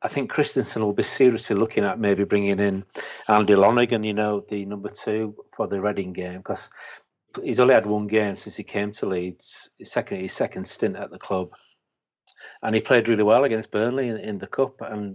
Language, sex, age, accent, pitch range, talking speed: English, male, 40-59, British, 100-115 Hz, 210 wpm